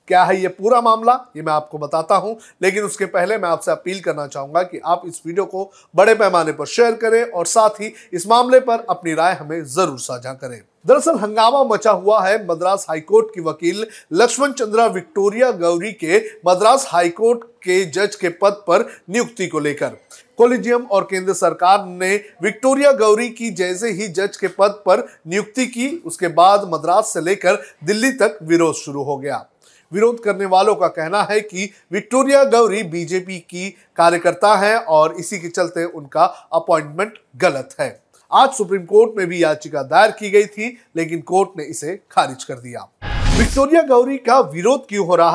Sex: male